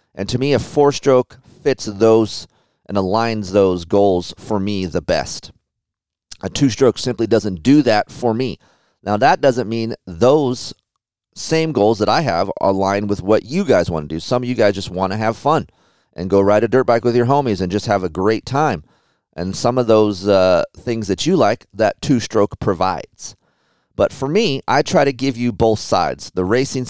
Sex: male